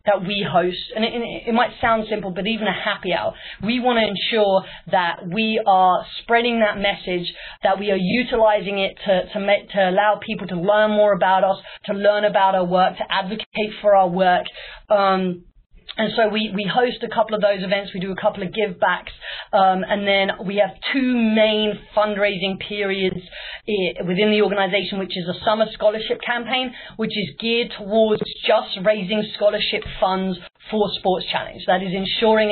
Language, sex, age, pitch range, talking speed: English, female, 30-49, 180-215 Hz, 185 wpm